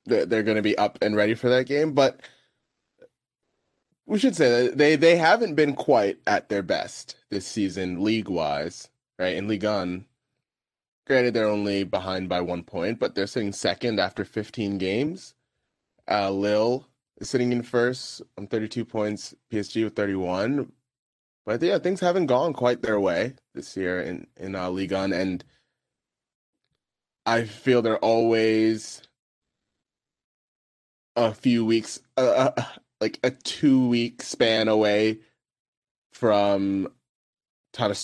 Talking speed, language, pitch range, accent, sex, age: 135 wpm, English, 95-120 Hz, American, male, 20-39